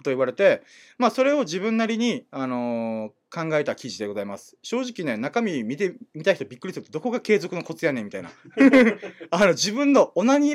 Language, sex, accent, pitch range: Japanese, male, native, 165-255 Hz